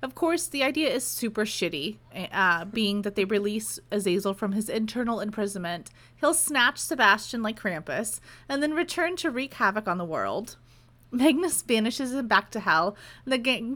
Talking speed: 175 wpm